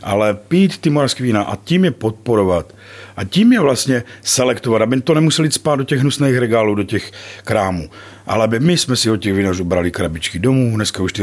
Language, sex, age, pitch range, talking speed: Czech, male, 50-69, 100-125 Hz, 205 wpm